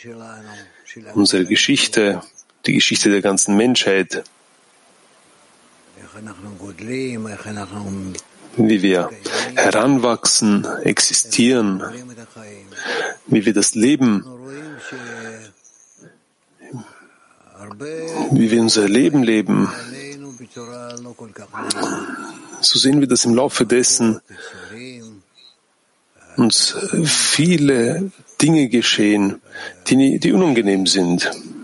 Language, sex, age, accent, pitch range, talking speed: German, male, 40-59, German, 105-125 Hz, 70 wpm